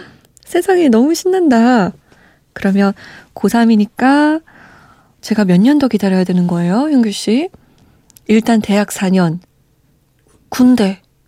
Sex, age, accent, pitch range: female, 20-39, native, 190-265 Hz